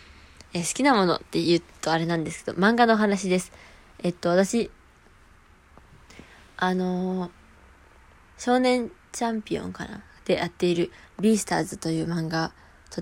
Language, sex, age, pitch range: Japanese, female, 20-39, 160-200 Hz